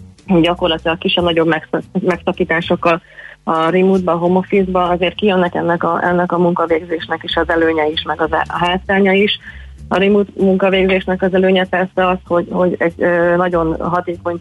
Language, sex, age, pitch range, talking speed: Hungarian, female, 30-49, 160-180 Hz, 150 wpm